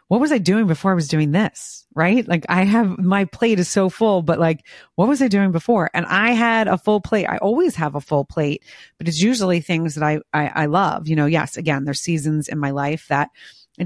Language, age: English, 30-49